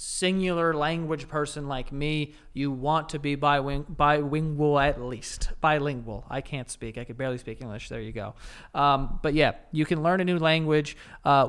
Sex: male